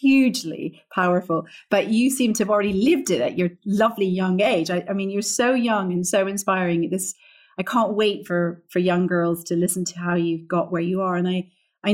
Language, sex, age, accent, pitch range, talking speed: English, female, 40-59, British, 180-225 Hz, 220 wpm